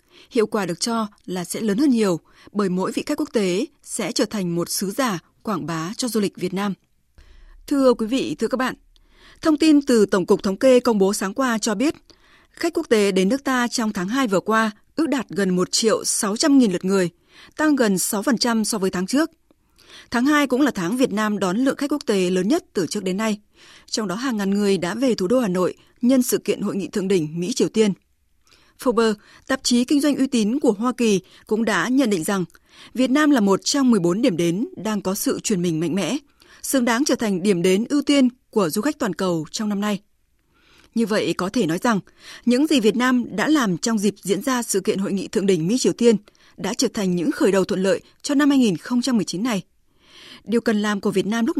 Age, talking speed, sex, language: 20-39, 235 wpm, female, Vietnamese